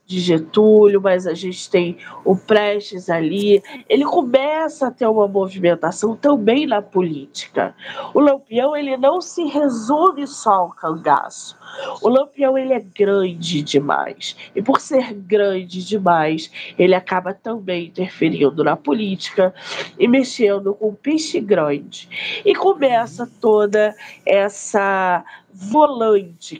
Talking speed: 125 wpm